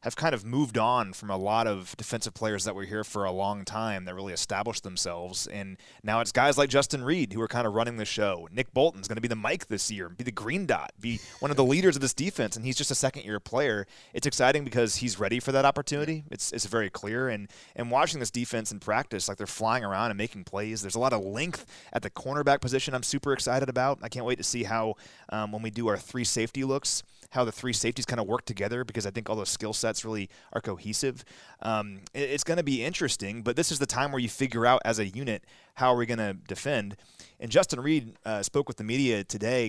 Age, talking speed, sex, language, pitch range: 30-49, 250 wpm, male, English, 105-130 Hz